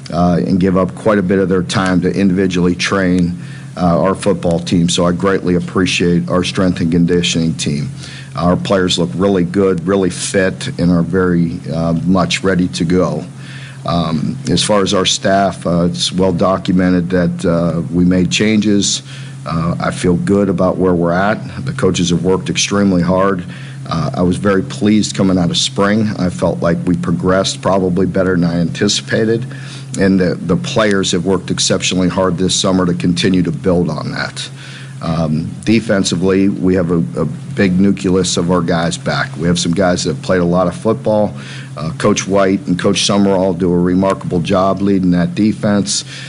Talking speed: 185 wpm